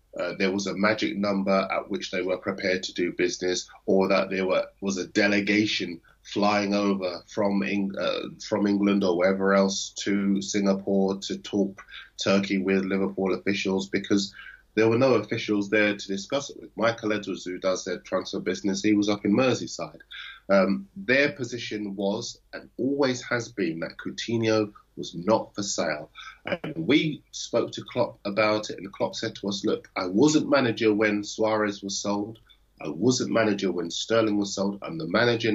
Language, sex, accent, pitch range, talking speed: English, male, British, 95-110 Hz, 175 wpm